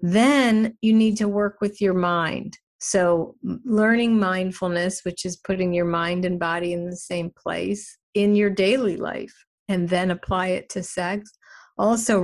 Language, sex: English, female